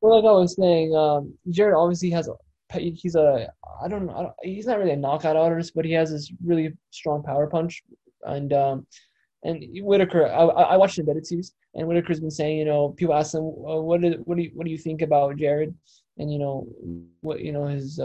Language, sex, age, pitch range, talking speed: English, male, 20-39, 145-170 Hz, 205 wpm